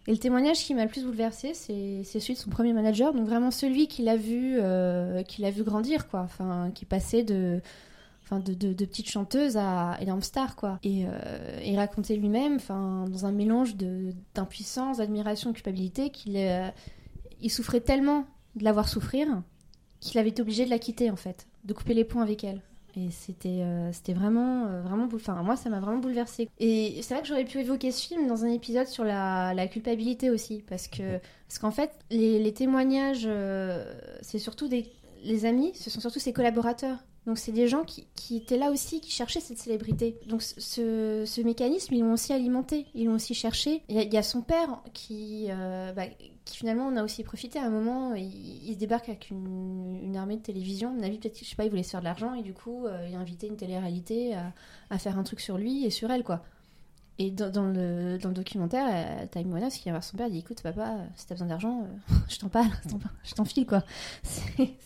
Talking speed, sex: 230 wpm, female